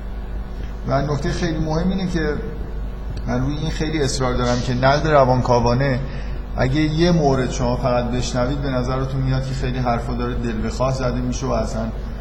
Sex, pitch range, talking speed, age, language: male, 115-130 Hz, 165 wpm, 50-69, Persian